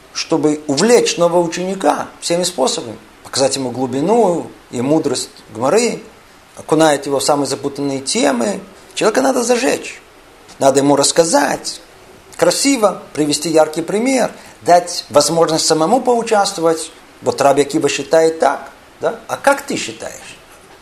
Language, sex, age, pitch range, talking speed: Russian, male, 50-69, 150-205 Hz, 120 wpm